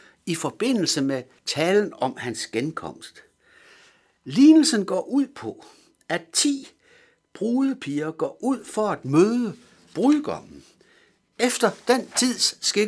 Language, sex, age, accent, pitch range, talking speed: Danish, male, 60-79, native, 165-275 Hz, 105 wpm